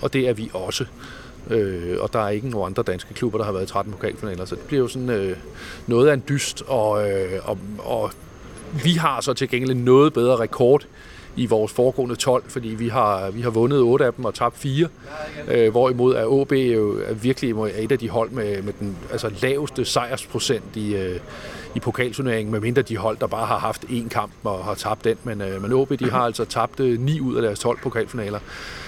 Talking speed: 215 wpm